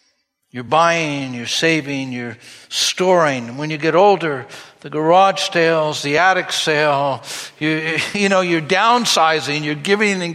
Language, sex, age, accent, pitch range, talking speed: English, male, 60-79, American, 150-215 Hz, 140 wpm